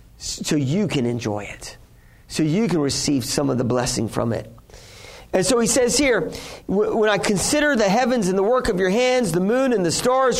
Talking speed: 210 wpm